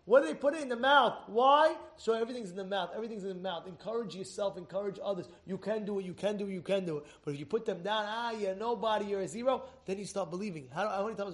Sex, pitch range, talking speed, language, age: male, 195-250 Hz, 285 wpm, English, 20-39